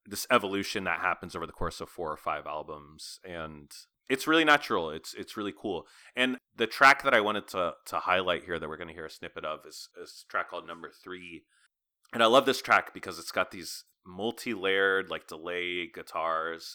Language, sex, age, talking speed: English, male, 30-49, 210 wpm